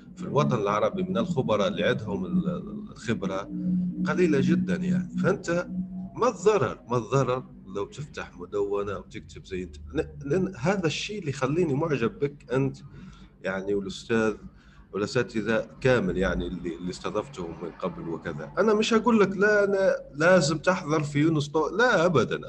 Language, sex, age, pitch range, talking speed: Arabic, male, 40-59, 110-180 Hz, 140 wpm